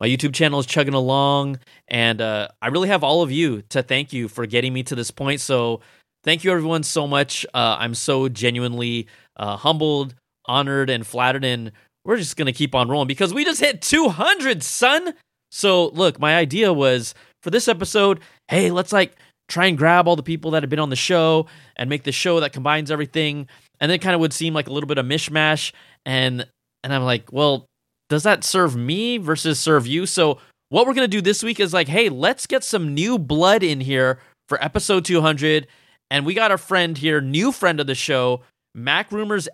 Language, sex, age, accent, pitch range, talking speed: English, male, 20-39, American, 130-175 Hz, 210 wpm